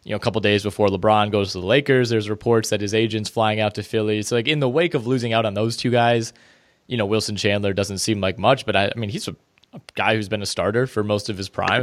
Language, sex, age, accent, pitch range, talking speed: English, male, 20-39, American, 105-120 Hz, 290 wpm